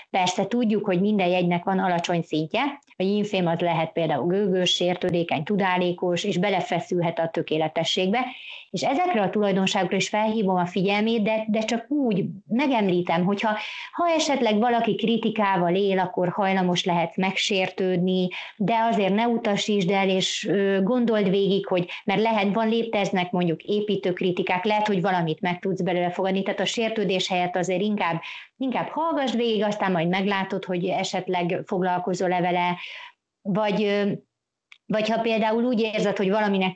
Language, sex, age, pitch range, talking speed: Hungarian, female, 30-49, 180-205 Hz, 150 wpm